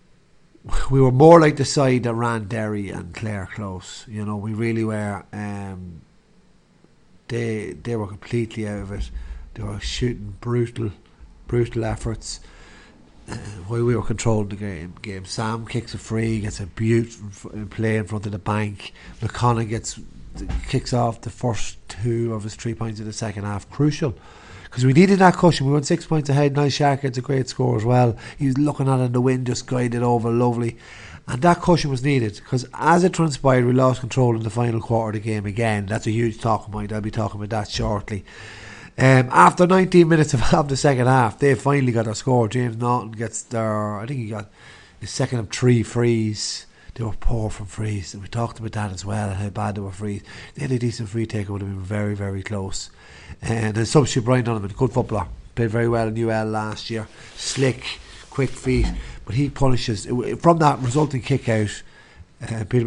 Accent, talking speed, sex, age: Irish, 205 wpm, male, 30-49